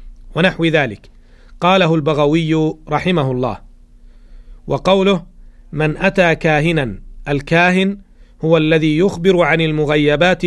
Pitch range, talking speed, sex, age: 150-175 Hz, 90 wpm, male, 40-59